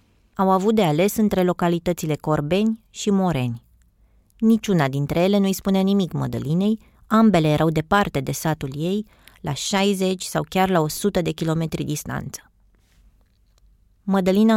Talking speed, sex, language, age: 135 wpm, female, Romanian, 20-39